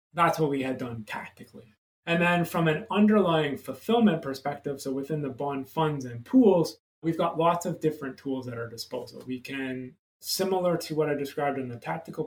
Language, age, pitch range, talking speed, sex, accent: English, 20-39, 130-165 Hz, 190 wpm, male, American